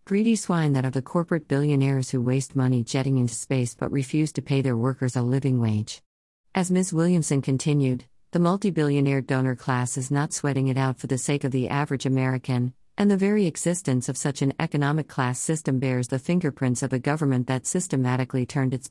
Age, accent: 50-69, American